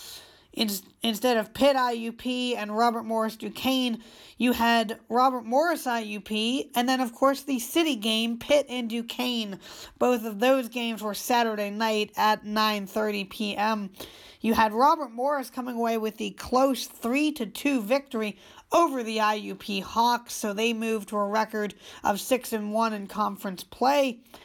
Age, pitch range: 40-59, 215-260 Hz